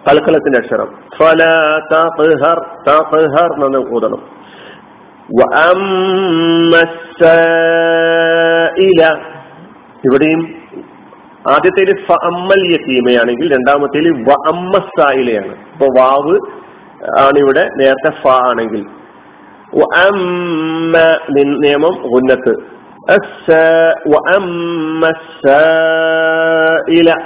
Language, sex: Malayalam, male